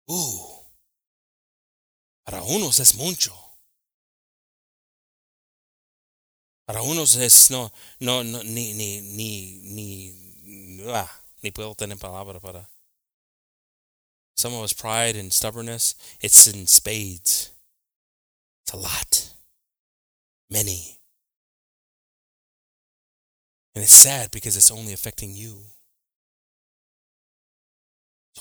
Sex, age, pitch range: male, 20-39, 95-120 Hz